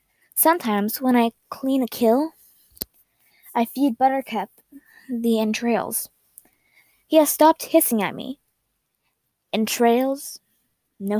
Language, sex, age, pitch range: English, female, 20-39, 215-270 Hz